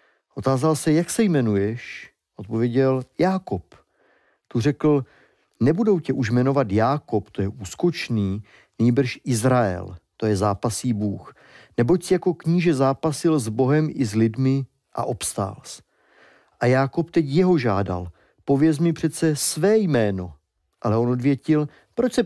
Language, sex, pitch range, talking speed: Czech, male, 110-155 Hz, 135 wpm